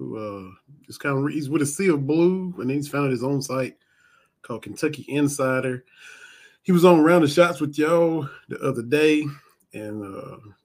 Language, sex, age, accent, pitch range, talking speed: English, male, 30-49, American, 125-155 Hz, 190 wpm